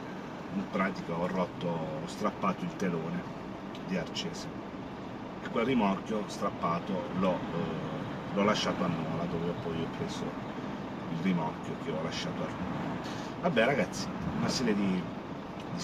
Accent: native